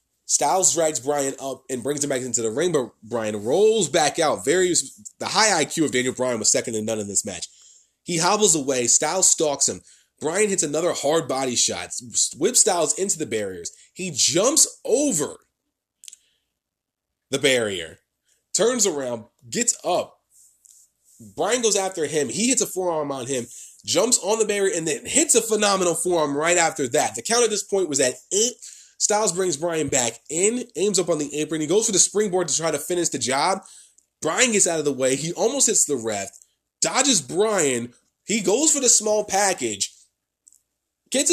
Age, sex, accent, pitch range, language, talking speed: 20-39, male, American, 135-205 Hz, English, 185 wpm